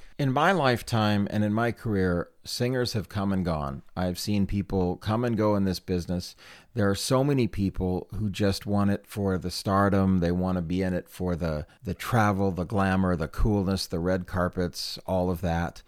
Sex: male